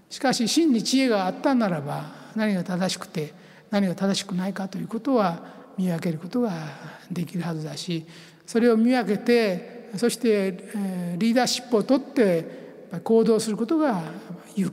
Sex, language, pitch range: male, Japanese, 180-245 Hz